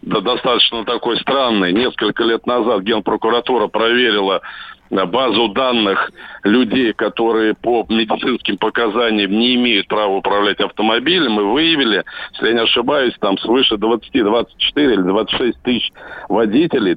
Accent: native